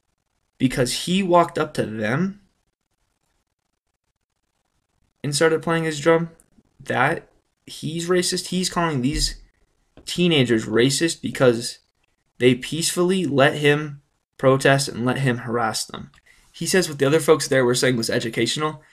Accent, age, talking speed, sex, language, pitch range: American, 20-39, 130 wpm, male, English, 120-155 Hz